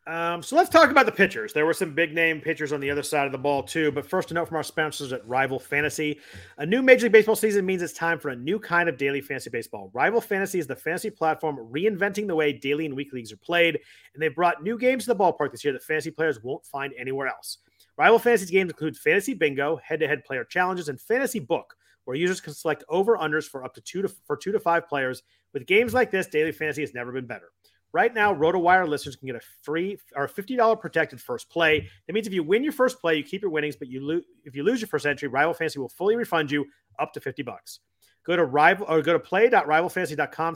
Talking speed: 250 wpm